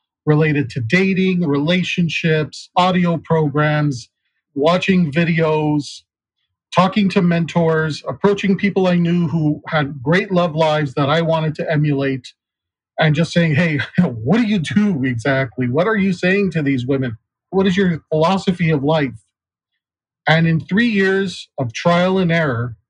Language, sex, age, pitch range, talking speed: English, male, 40-59, 140-170 Hz, 145 wpm